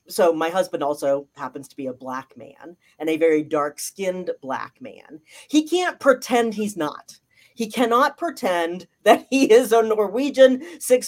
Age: 40-59